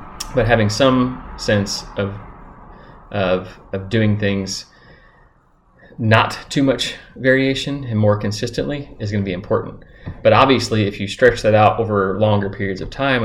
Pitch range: 95-110 Hz